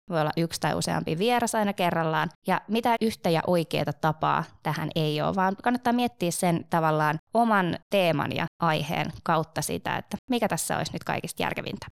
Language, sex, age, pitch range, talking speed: Finnish, female, 20-39, 155-200 Hz, 175 wpm